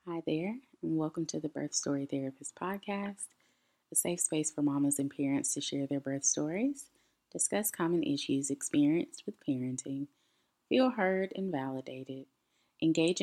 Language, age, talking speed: English, 20-39, 150 wpm